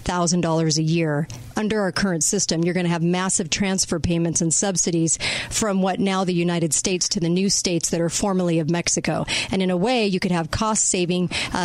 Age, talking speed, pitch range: 40-59, 215 wpm, 175-210 Hz